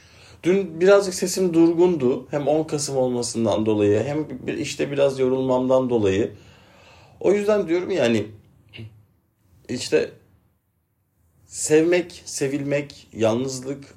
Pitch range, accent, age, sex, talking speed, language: 100-135 Hz, native, 40-59, male, 95 wpm, Turkish